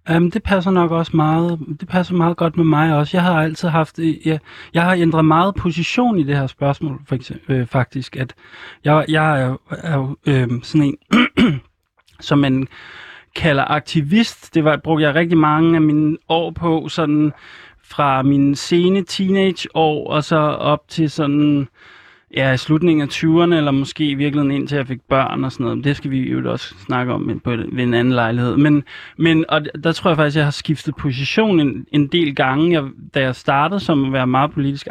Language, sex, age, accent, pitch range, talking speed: Danish, male, 20-39, native, 135-160 Hz, 200 wpm